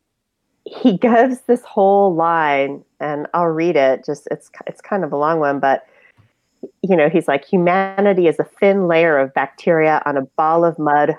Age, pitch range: 30-49, 145-190 Hz